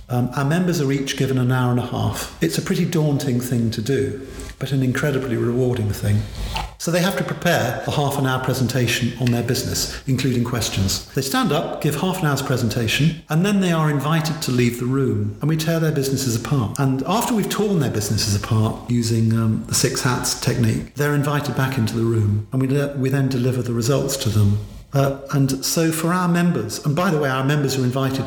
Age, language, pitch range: 50-69, English, 115-145 Hz